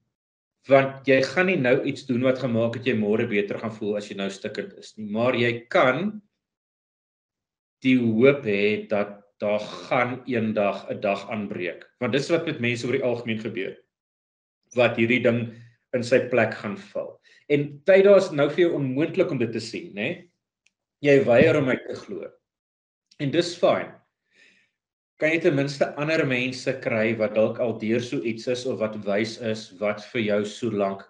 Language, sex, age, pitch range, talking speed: English, male, 40-59, 110-145 Hz, 180 wpm